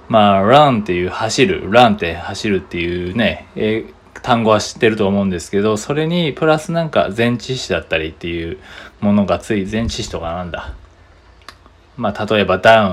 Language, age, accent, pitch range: Japanese, 20-39, native, 95-155 Hz